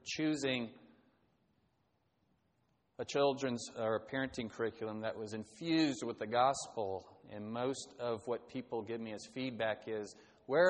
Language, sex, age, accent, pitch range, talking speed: English, male, 40-59, American, 110-150 Hz, 135 wpm